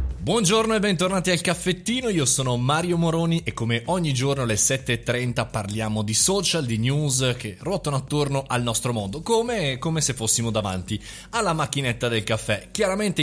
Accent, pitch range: native, 115-165 Hz